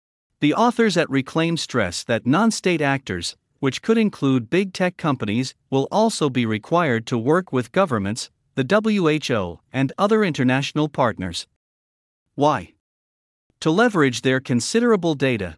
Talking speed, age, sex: 130 wpm, 50-69, male